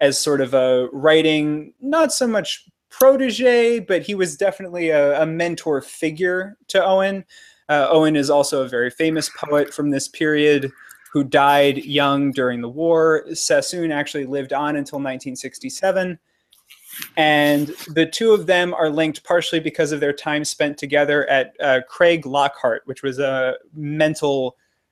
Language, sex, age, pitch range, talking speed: English, male, 20-39, 135-160 Hz, 155 wpm